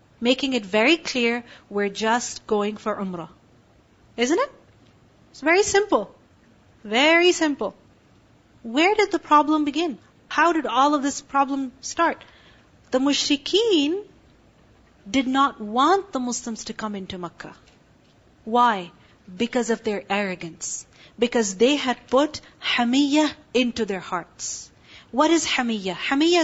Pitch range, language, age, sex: 215-285 Hz, English, 40-59, female